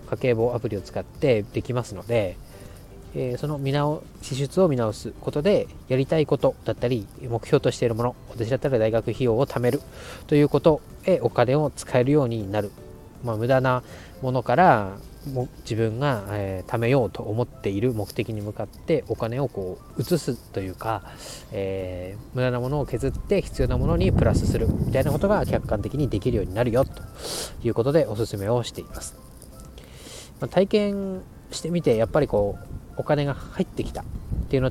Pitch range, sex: 100-135 Hz, male